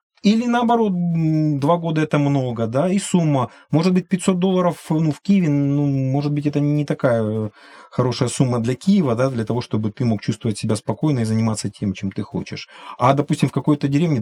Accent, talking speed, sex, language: native, 195 wpm, male, Russian